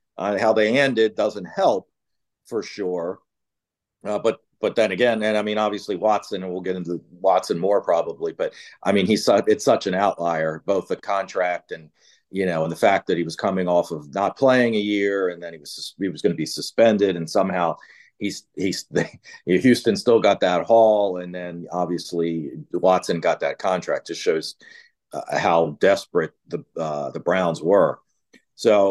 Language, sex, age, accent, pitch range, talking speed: English, male, 50-69, American, 95-130 Hz, 185 wpm